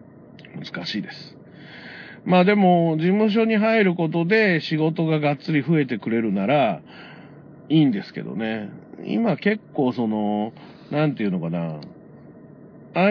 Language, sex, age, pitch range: Japanese, male, 50-69, 140-195 Hz